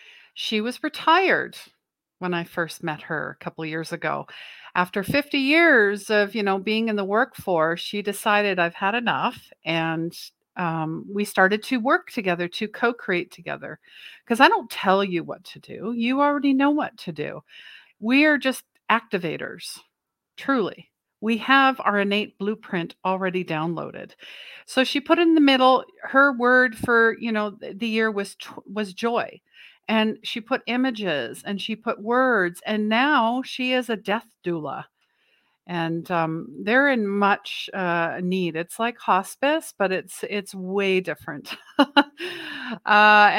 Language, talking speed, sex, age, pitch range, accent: English, 155 wpm, female, 50-69, 185-245 Hz, American